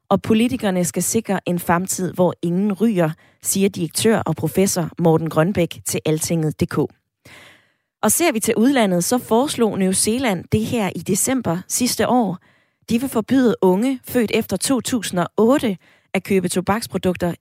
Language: Danish